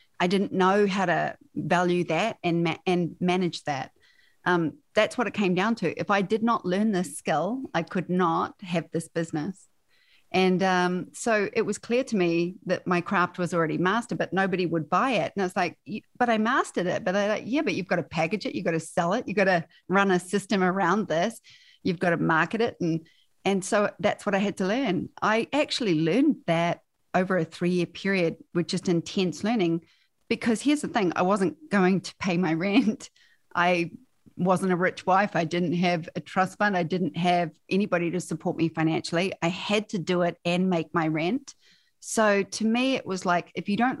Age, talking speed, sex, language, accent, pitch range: 40-59, 215 wpm, female, English, Australian, 170-210 Hz